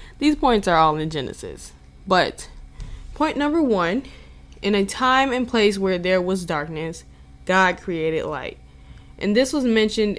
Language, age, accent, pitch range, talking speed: English, 10-29, American, 160-215 Hz, 155 wpm